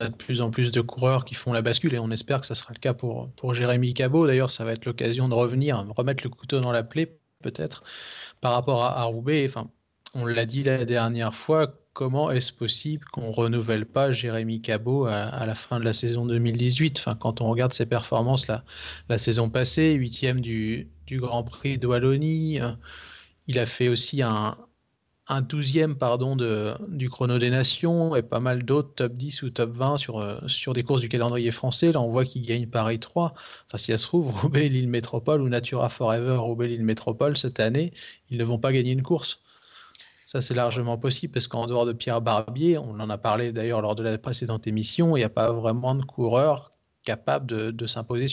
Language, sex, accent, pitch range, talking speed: French, male, French, 115-135 Hz, 205 wpm